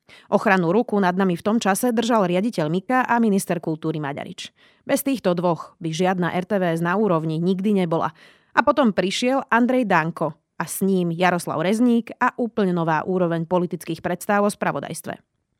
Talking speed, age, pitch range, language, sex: 160 wpm, 30-49, 175-225 Hz, Slovak, female